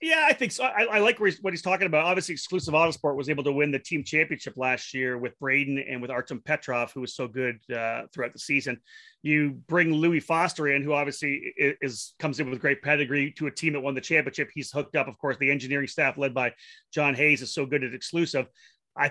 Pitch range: 135-160 Hz